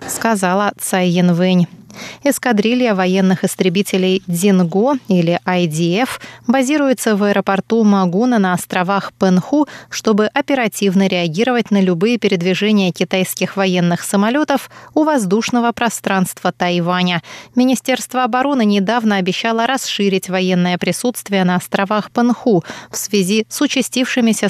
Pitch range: 185-240 Hz